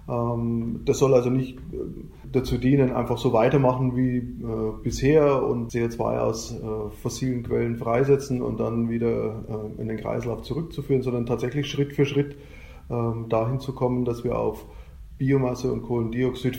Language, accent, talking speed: German, German, 135 wpm